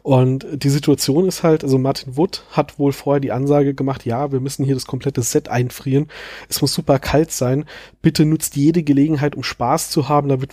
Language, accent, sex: German, German, male